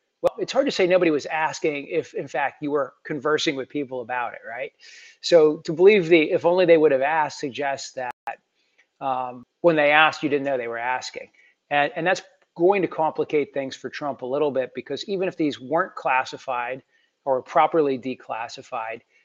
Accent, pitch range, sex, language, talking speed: American, 135-165 Hz, male, English, 190 wpm